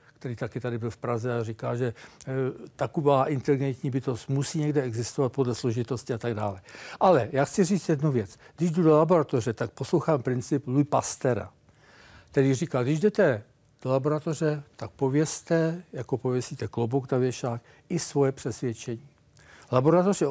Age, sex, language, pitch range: 60-79, male, Czech, 125-160 Hz